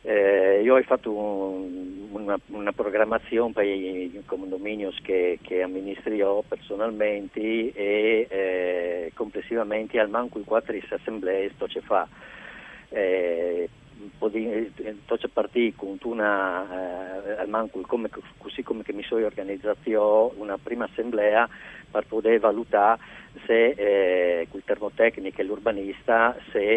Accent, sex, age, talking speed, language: native, male, 50-69, 105 wpm, Italian